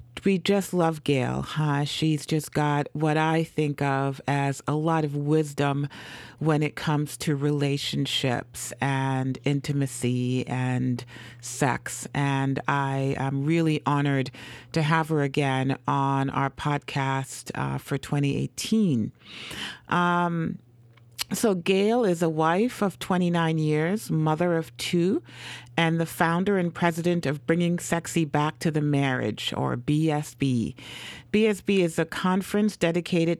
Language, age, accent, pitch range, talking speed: English, 40-59, American, 140-175 Hz, 130 wpm